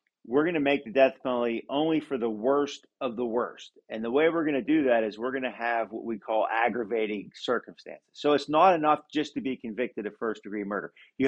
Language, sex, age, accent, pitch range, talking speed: English, male, 50-69, American, 120-155 Hz, 240 wpm